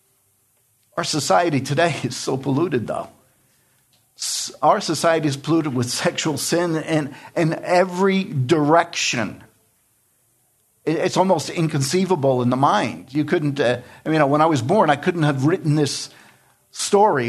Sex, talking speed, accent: male, 135 wpm, American